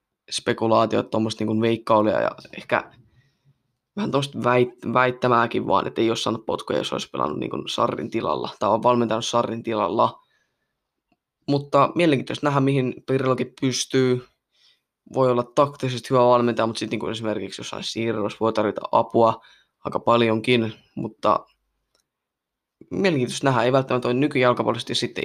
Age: 20-39